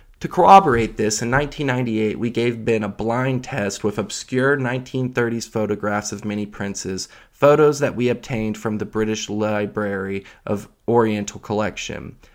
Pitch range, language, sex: 105-130 Hz, English, male